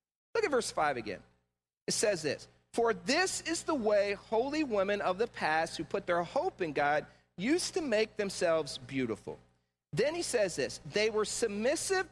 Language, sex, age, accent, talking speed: English, male, 40-59, American, 180 wpm